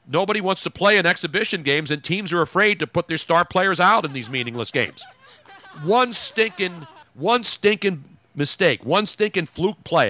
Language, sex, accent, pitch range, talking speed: English, male, American, 130-180 Hz, 180 wpm